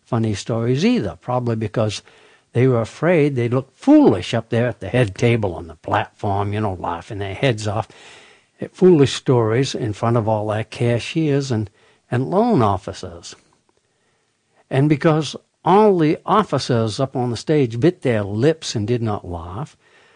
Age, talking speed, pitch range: 60-79, 165 wpm, 105-135 Hz